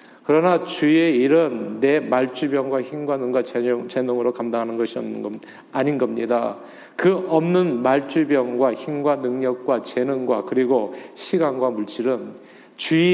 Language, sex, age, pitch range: Korean, male, 40-59, 125-160 Hz